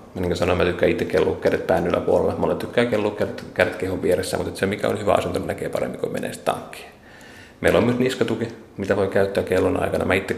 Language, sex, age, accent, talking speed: Finnish, male, 30-49, native, 220 wpm